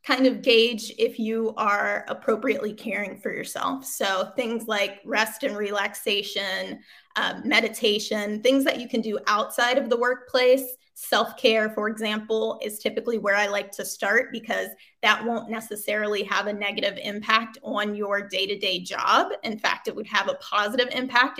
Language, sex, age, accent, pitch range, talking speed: English, female, 20-39, American, 205-245 Hz, 160 wpm